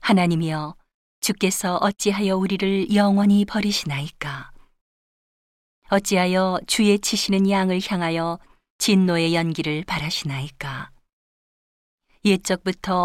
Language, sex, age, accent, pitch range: Korean, female, 40-59, native, 170-200 Hz